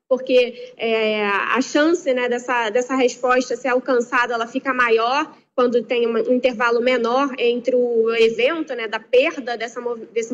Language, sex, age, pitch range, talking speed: Portuguese, female, 20-39, 250-315 Hz, 150 wpm